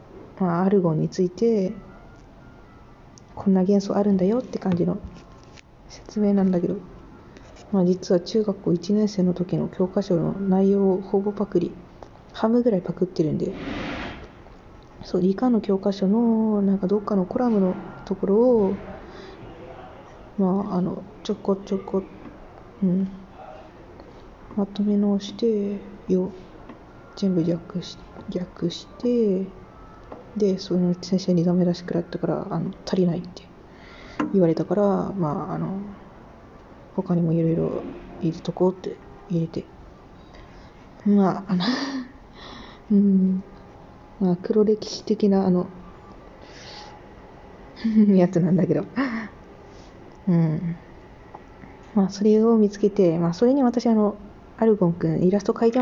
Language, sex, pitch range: Japanese, female, 175-205 Hz